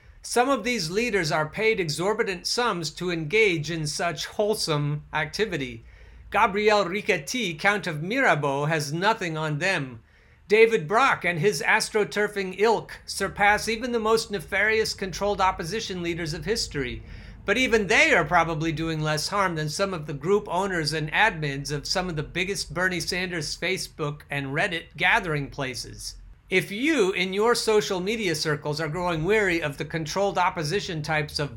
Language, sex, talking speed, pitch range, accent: English, male, 160 wpm, 150-200 Hz, American